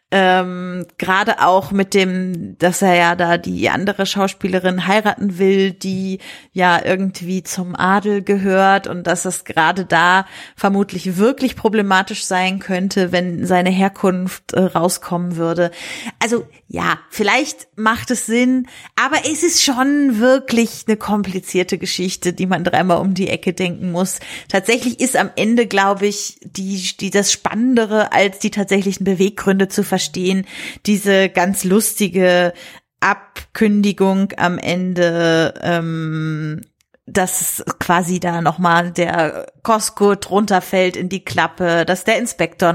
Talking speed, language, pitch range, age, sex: 135 wpm, German, 175-200 Hz, 30-49, female